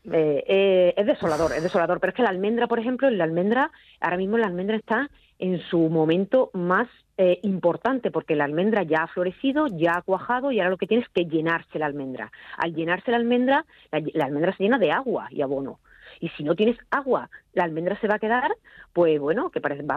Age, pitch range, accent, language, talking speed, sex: 40-59, 165-235 Hz, Spanish, Spanish, 220 wpm, female